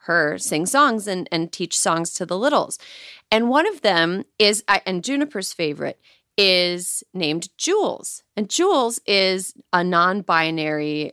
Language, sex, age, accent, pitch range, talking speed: English, female, 30-49, American, 185-270 Hz, 140 wpm